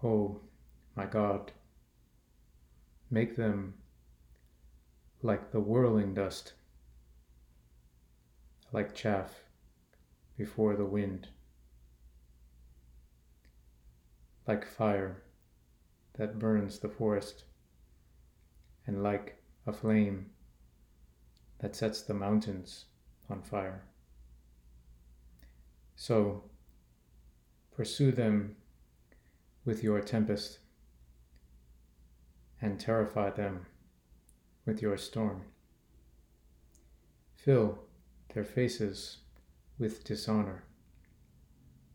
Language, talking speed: English, 65 wpm